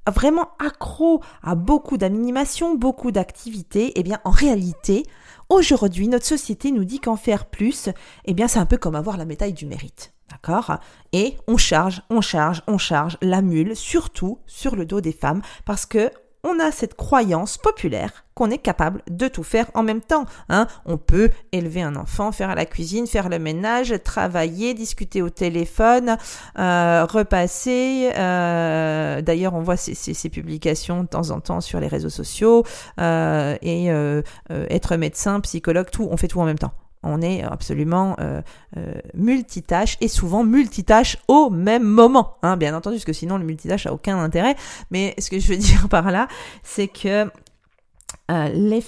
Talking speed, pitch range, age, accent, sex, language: 180 wpm, 170-230 Hz, 40-59, French, female, French